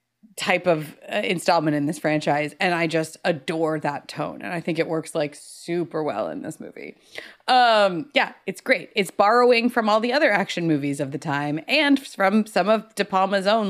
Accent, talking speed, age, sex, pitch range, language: American, 200 wpm, 30-49, female, 155-195 Hz, English